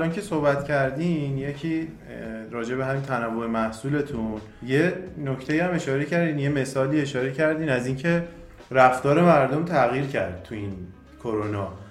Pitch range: 115-150 Hz